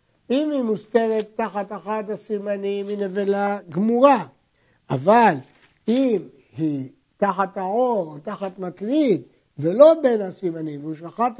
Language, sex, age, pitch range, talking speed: Hebrew, male, 60-79, 165-220 Hz, 105 wpm